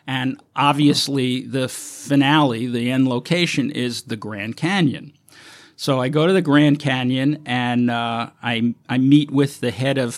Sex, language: male, English